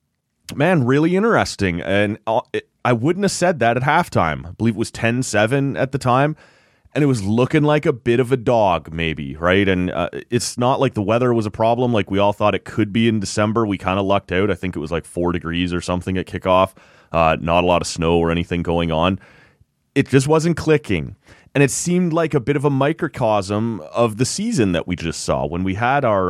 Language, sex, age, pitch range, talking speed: English, male, 30-49, 95-130 Hz, 230 wpm